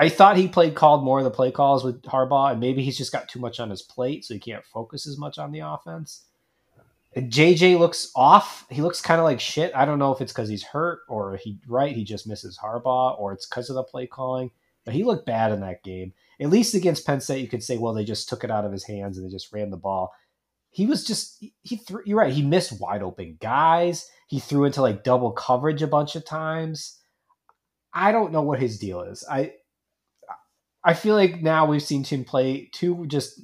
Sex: male